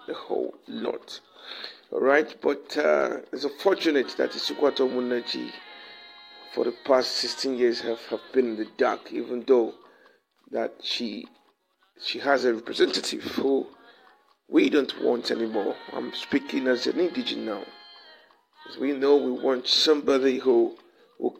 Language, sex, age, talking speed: English, male, 50-69, 145 wpm